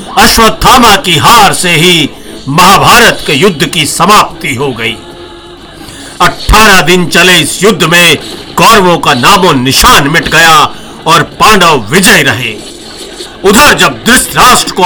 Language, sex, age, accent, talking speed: Hindi, male, 50-69, native, 125 wpm